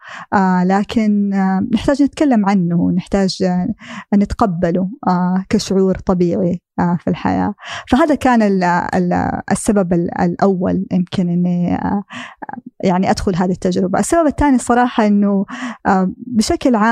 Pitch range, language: 185-225 Hz, Arabic